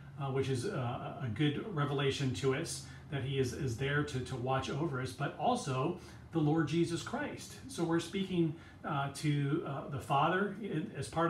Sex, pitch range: male, 125-165 Hz